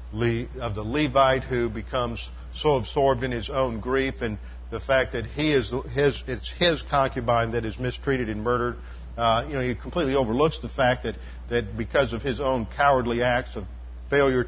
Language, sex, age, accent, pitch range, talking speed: English, male, 50-69, American, 110-135 Hz, 185 wpm